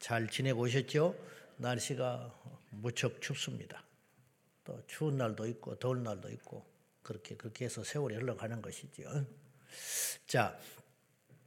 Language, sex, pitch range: Korean, male, 120-150 Hz